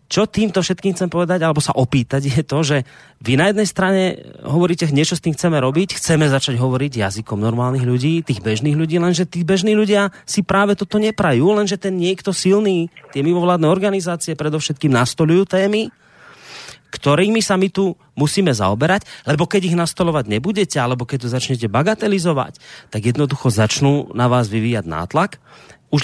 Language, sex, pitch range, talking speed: Slovak, male, 125-175 Hz, 165 wpm